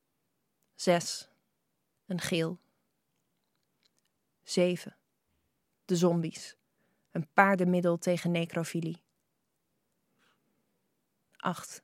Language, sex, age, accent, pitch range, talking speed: Dutch, female, 20-39, Dutch, 175-200 Hz, 55 wpm